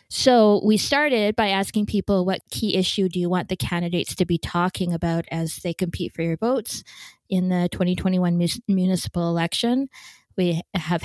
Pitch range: 175-200 Hz